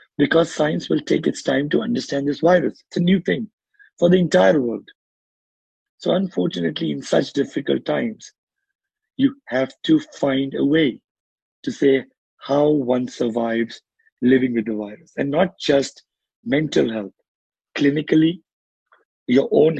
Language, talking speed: English, 140 wpm